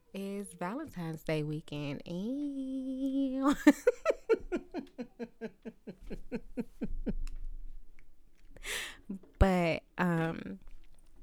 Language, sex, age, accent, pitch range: English, female, 20-39, American, 145-175 Hz